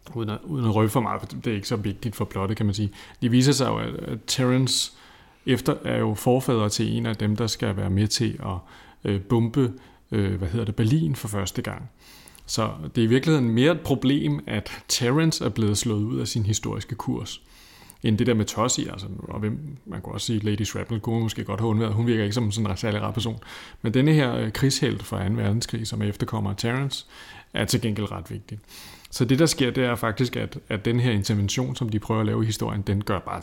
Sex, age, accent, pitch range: male, 30-49, native, 105-125 Hz